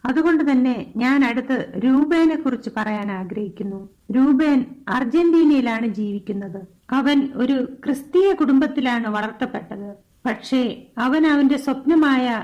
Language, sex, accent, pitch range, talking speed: Malayalam, female, native, 220-265 Hz, 95 wpm